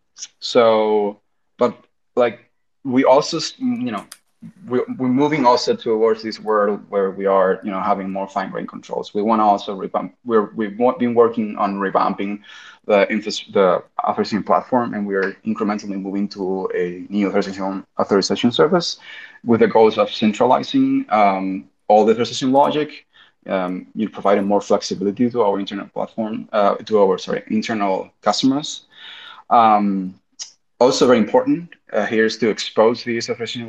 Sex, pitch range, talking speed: male, 100-130 Hz, 155 wpm